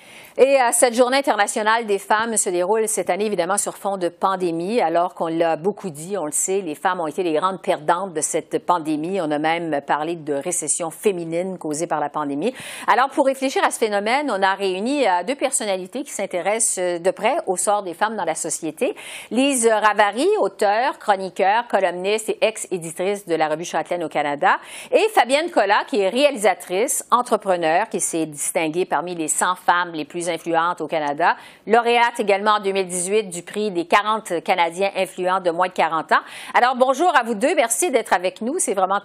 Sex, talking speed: female, 190 wpm